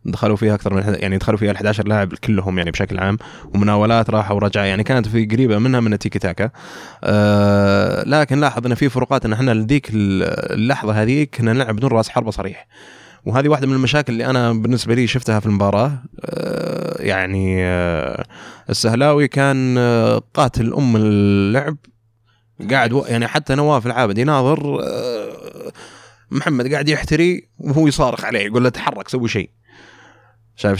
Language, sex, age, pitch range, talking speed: Arabic, male, 20-39, 105-135 Hz, 155 wpm